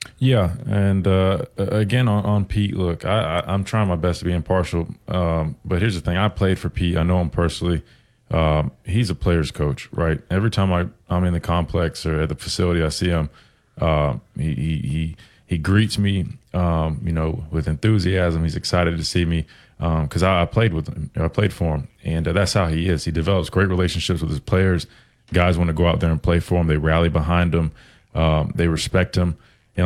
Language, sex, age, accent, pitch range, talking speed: English, male, 20-39, American, 85-100 Hz, 225 wpm